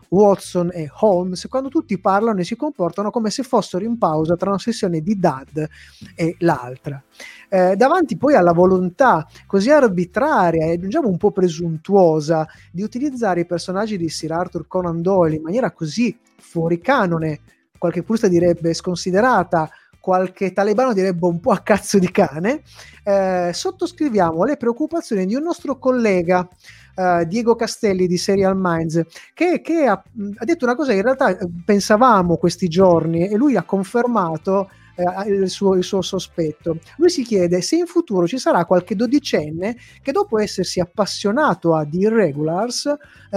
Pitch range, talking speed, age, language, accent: 170-230 Hz, 160 wpm, 20-39, Italian, native